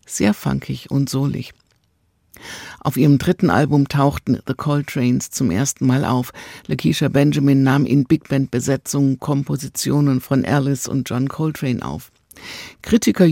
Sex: female